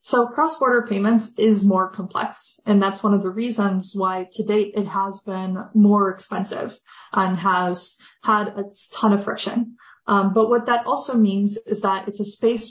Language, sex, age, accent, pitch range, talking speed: English, female, 20-39, American, 195-225 Hz, 180 wpm